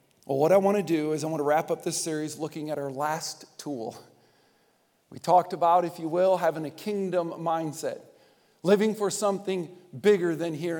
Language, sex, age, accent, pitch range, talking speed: English, male, 50-69, American, 150-195 Hz, 195 wpm